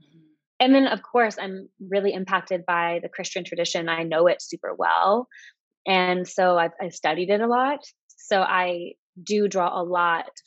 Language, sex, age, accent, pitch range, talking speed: English, female, 20-39, American, 170-200 Hz, 170 wpm